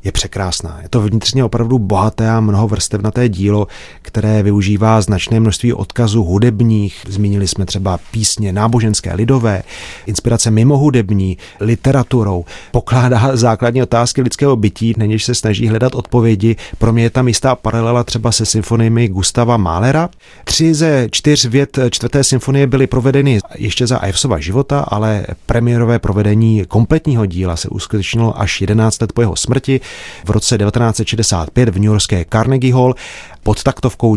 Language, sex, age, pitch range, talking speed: Czech, male, 30-49, 100-120 Hz, 145 wpm